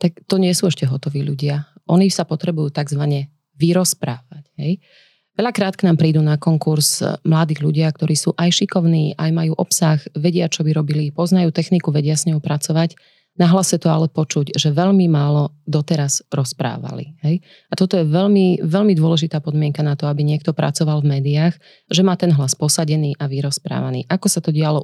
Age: 30-49